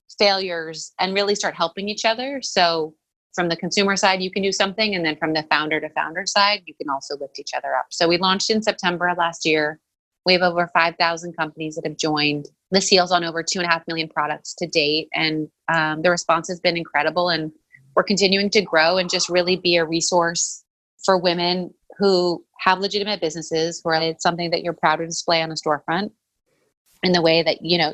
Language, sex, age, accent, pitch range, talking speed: English, female, 30-49, American, 160-190 Hz, 215 wpm